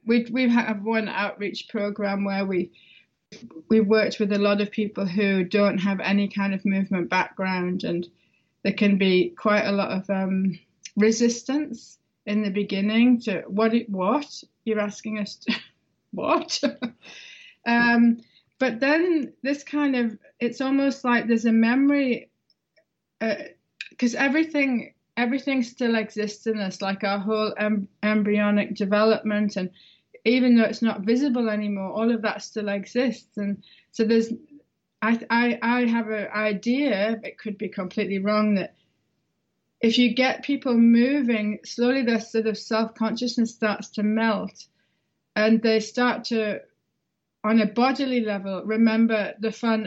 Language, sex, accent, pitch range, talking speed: English, female, British, 205-235 Hz, 145 wpm